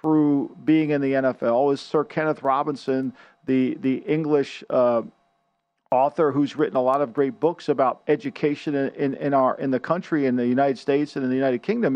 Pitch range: 140-180 Hz